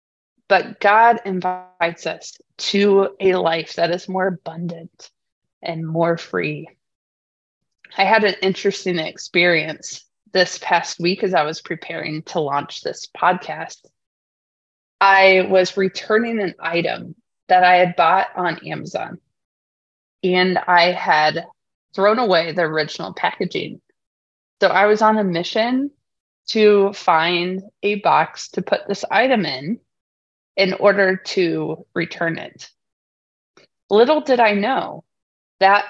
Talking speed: 125 wpm